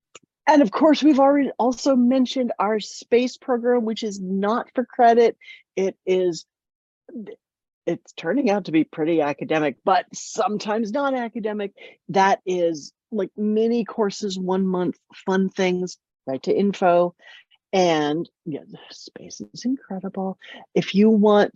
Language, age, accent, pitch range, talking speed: English, 40-59, American, 175-245 Hz, 135 wpm